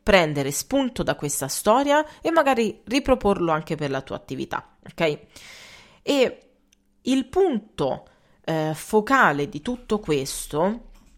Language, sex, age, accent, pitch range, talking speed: Italian, female, 30-49, native, 155-220 Hz, 120 wpm